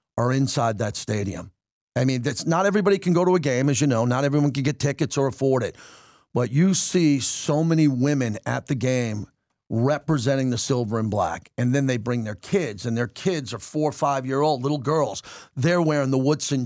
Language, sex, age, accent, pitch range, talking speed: English, male, 40-59, American, 125-160 Hz, 210 wpm